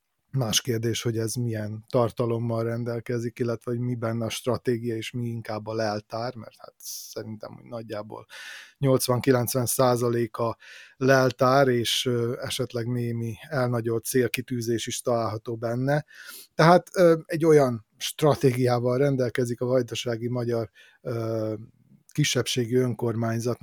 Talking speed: 110 wpm